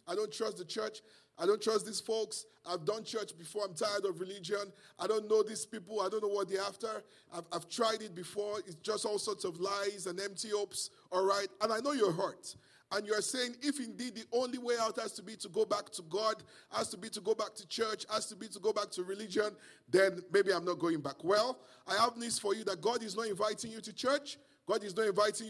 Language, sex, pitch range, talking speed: English, male, 190-230 Hz, 250 wpm